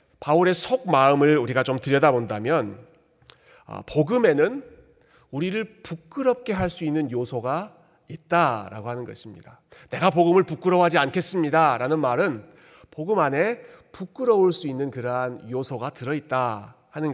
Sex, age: male, 40-59